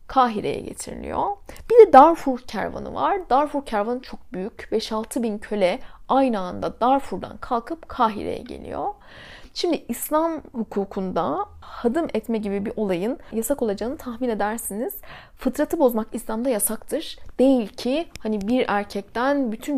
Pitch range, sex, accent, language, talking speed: 215-280 Hz, female, native, Turkish, 125 wpm